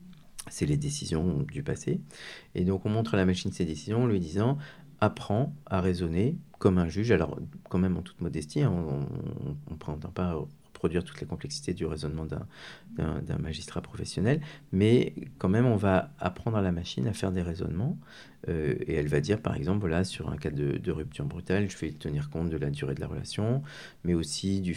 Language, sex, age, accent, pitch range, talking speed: French, male, 50-69, French, 85-110 Hz, 210 wpm